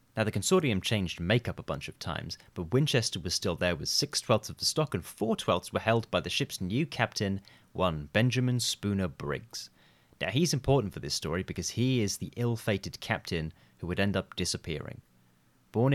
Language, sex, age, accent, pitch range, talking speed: English, male, 30-49, British, 95-130 Hz, 195 wpm